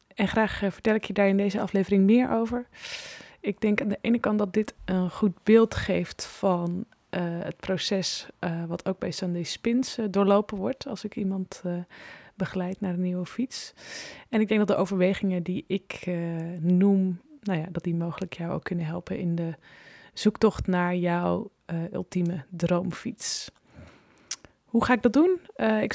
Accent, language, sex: Dutch, Dutch, female